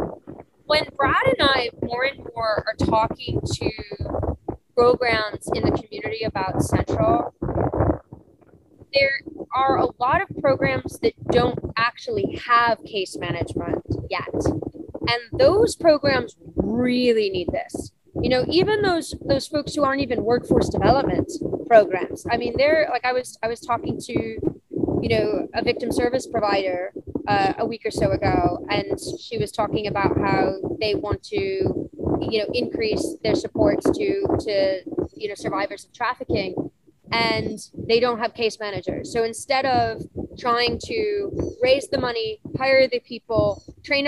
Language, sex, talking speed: English, female, 145 wpm